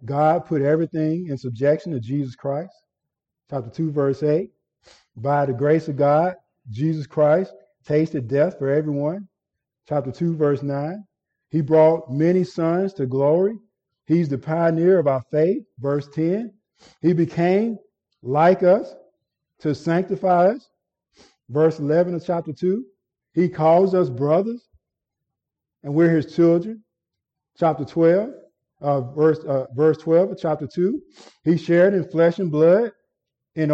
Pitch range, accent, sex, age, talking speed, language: 150-190 Hz, American, male, 50-69, 135 wpm, English